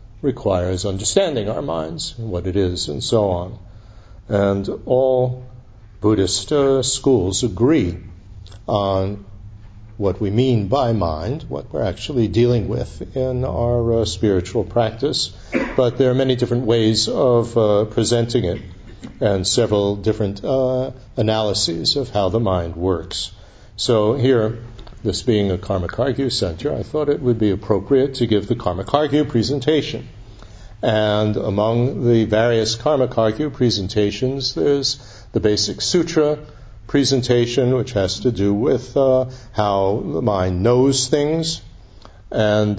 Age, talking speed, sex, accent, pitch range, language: 60-79, 130 wpm, male, American, 100-125 Hz, English